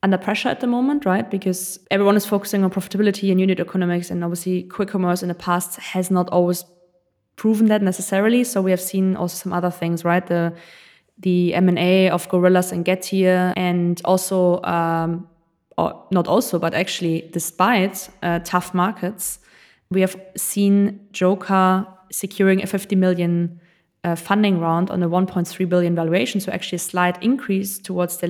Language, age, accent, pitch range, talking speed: German, 20-39, German, 175-200 Hz, 165 wpm